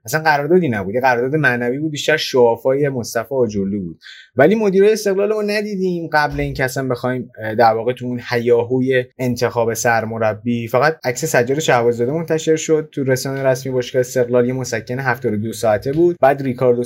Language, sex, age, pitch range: Persian, male, 20-39, 120-155 Hz